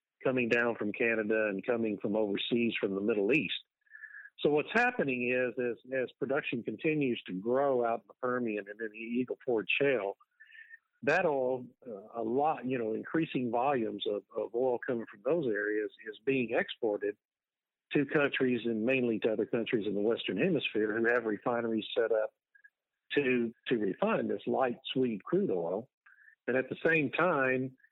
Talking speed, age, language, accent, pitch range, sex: 170 wpm, 50-69, English, American, 110-145 Hz, male